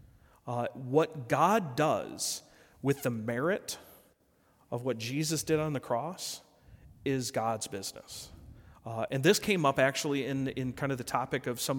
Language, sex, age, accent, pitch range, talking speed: English, male, 40-59, American, 120-145 Hz, 160 wpm